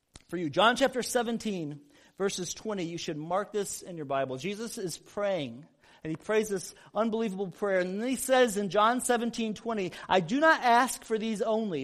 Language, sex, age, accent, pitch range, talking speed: English, male, 40-59, American, 160-225 Hz, 195 wpm